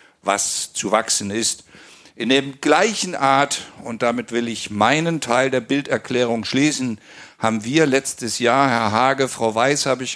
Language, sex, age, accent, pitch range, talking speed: German, male, 50-69, German, 105-130 Hz, 160 wpm